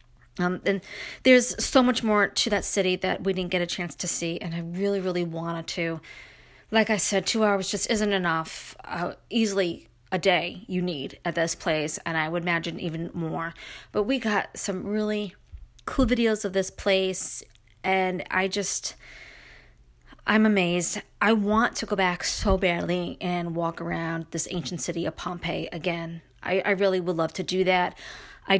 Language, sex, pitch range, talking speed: English, female, 170-200 Hz, 180 wpm